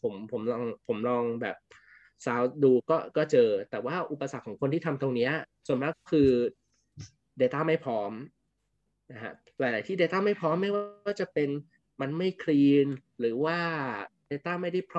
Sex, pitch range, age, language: male, 130-165 Hz, 20-39, Thai